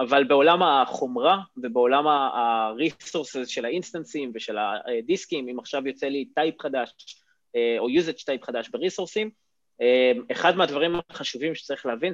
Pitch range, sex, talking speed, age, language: 135-200 Hz, male, 120 wpm, 20-39, Hebrew